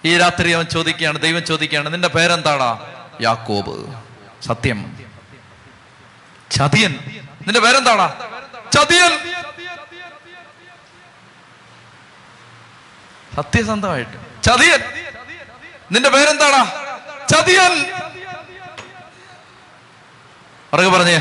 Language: Malayalam